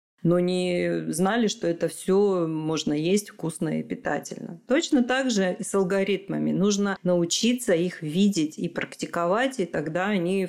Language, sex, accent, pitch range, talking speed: Russian, female, native, 170-215 Hz, 150 wpm